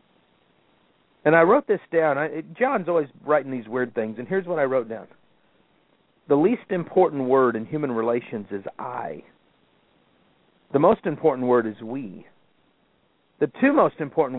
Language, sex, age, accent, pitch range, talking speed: English, male, 50-69, American, 120-155 Hz, 150 wpm